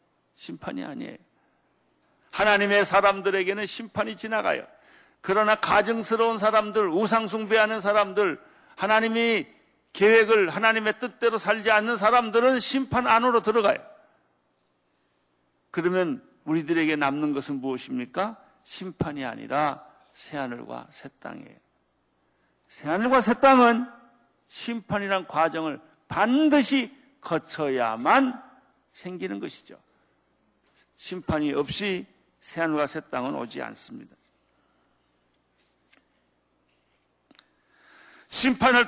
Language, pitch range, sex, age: Korean, 155-225 Hz, male, 50-69